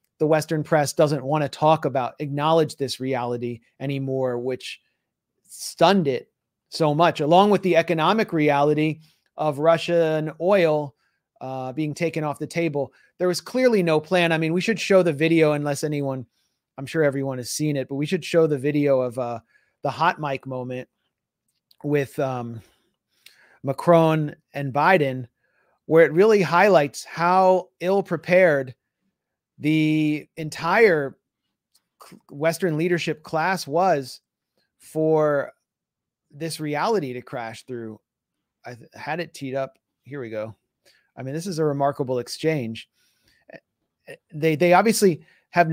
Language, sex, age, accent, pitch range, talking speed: English, male, 30-49, American, 135-170 Hz, 140 wpm